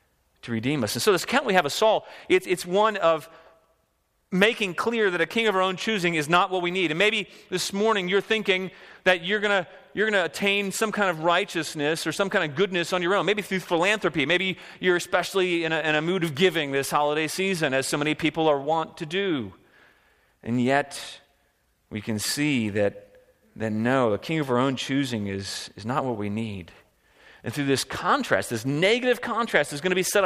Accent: American